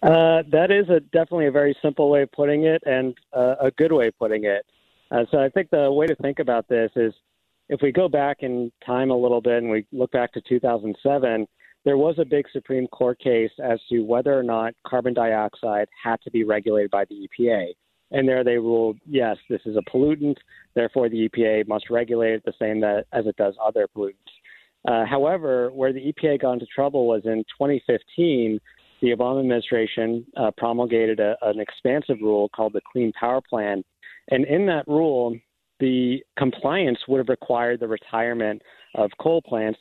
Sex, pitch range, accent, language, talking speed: male, 110-135 Hz, American, English, 190 wpm